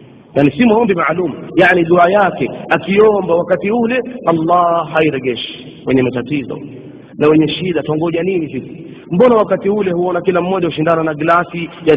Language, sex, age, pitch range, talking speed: Swahili, male, 40-59, 155-210 Hz, 150 wpm